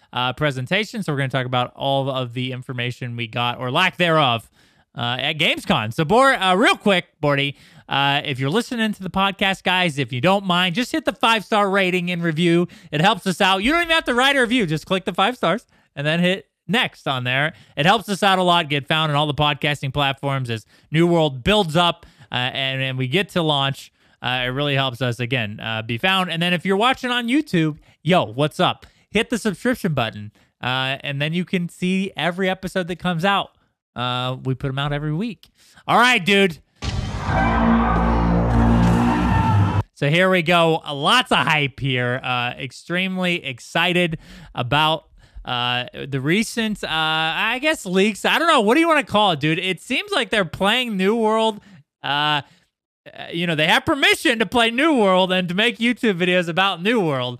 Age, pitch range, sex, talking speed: 20-39, 135-200 Hz, male, 200 wpm